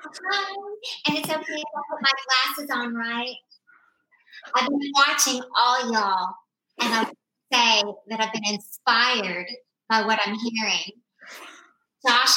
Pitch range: 220-290 Hz